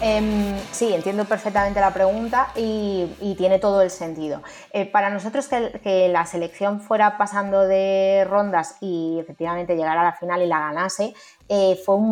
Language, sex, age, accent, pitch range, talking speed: Spanish, female, 20-39, Spanish, 185-220 Hz, 170 wpm